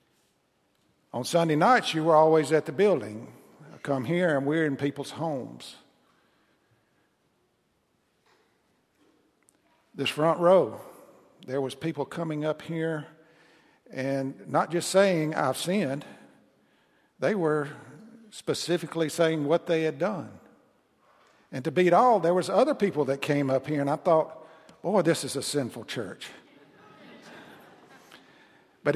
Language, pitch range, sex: English, 135-160 Hz, male